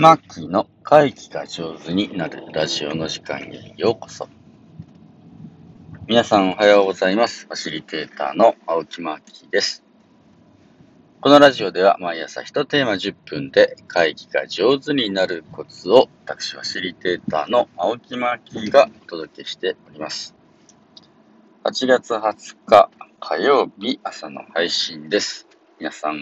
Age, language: 40-59, Japanese